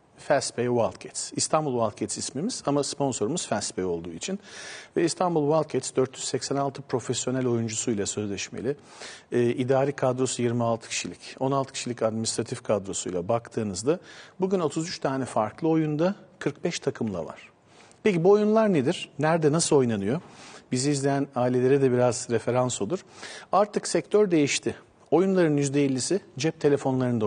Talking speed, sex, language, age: 125 wpm, male, Turkish, 50-69